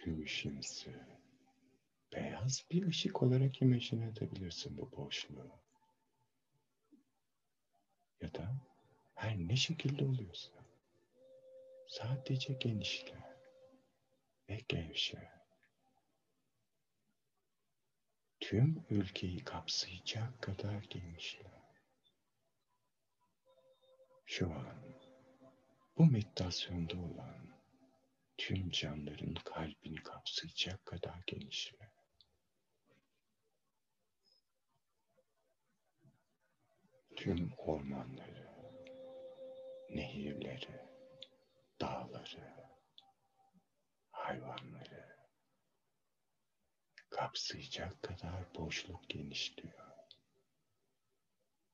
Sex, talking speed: male, 50 wpm